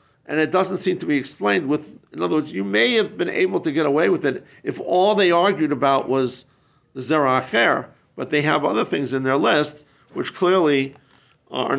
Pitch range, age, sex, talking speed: 125-155 Hz, 50-69, male, 210 wpm